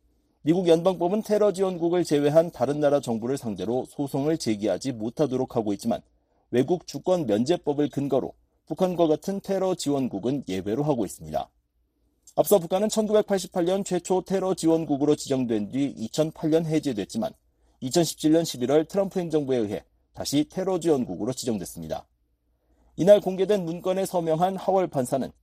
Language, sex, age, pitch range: Korean, male, 40-59, 125-180 Hz